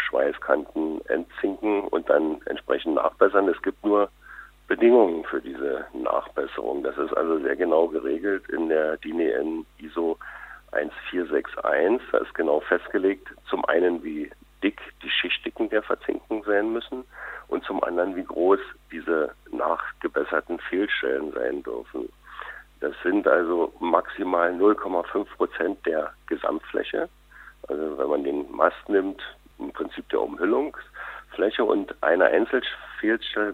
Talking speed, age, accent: 125 wpm, 50-69, German